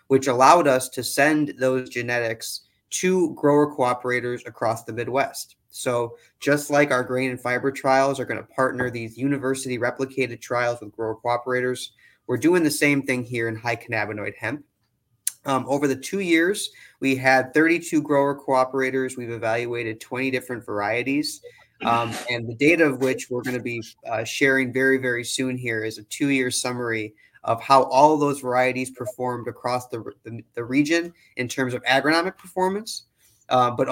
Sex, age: male, 20-39